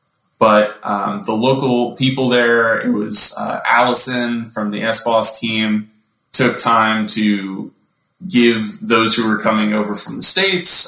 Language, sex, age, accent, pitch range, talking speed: English, male, 20-39, American, 105-130 Hz, 145 wpm